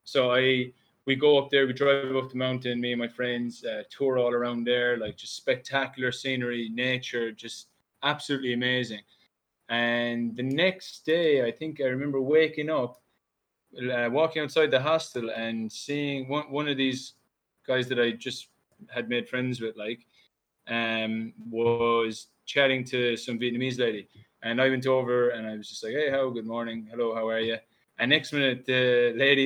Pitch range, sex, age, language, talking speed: 120-140 Hz, male, 20-39, English, 175 wpm